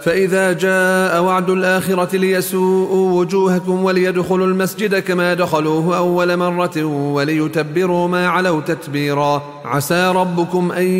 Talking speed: 105 wpm